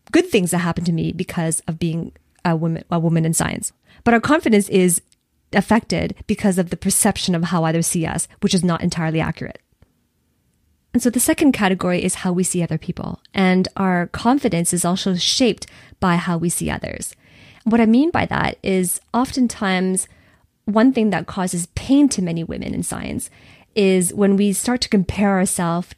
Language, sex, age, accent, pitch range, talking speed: English, female, 30-49, American, 175-215 Hz, 185 wpm